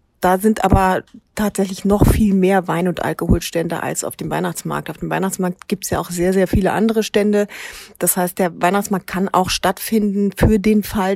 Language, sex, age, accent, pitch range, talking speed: German, female, 30-49, German, 185-215 Hz, 195 wpm